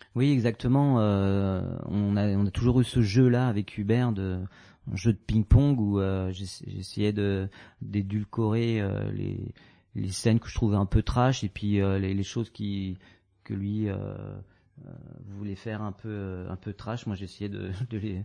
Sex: male